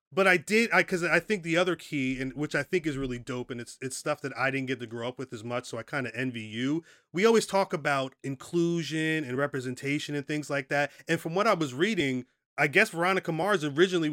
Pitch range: 125-150 Hz